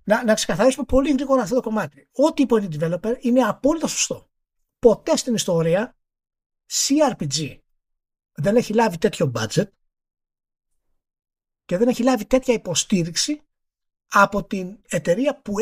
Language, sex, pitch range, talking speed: Greek, male, 160-245 Hz, 135 wpm